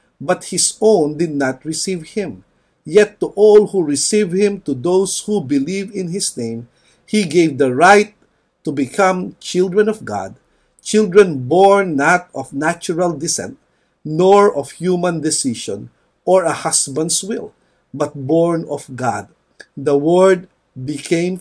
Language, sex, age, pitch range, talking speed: English, male, 50-69, 140-180 Hz, 140 wpm